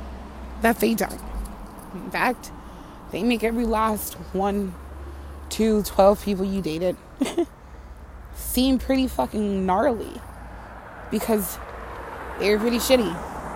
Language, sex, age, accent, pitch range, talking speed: English, female, 20-39, American, 180-265 Hz, 100 wpm